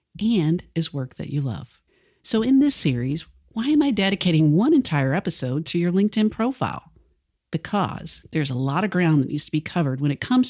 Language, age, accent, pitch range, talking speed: English, 50-69, American, 145-200 Hz, 200 wpm